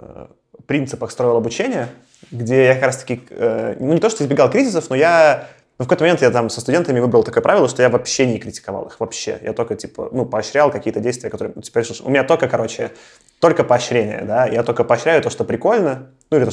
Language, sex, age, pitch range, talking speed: Russian, male, 20-39, 110-130 Hz, 220 wpm